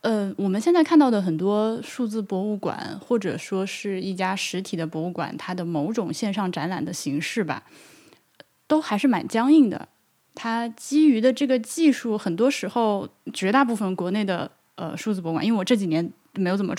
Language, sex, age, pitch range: Chinese, female, 10-29, 170-230 Hz